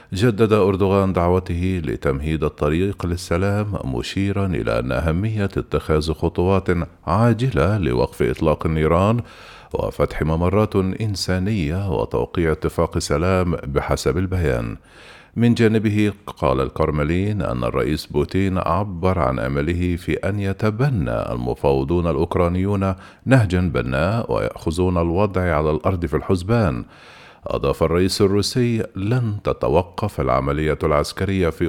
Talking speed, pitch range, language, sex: 105 wpm, 80-100 Hz, Arabic, male